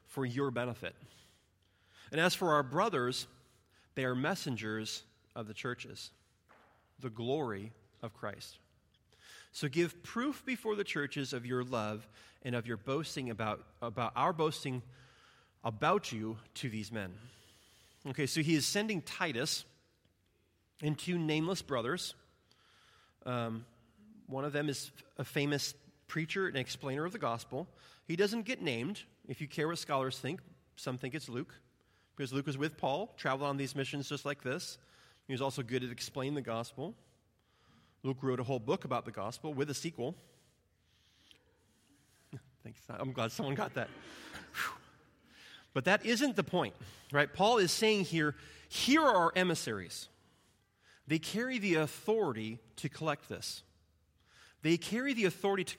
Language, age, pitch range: English, 30-49, 110-155 Hz